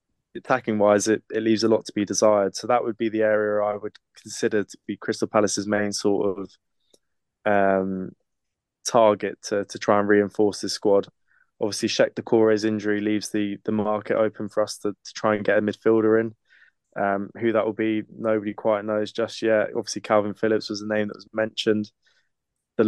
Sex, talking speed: male, 190 wpm